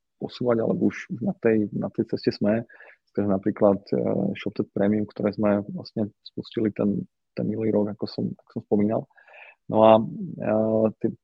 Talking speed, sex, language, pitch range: 160 wpm, male, Slovak, 105-115 Hz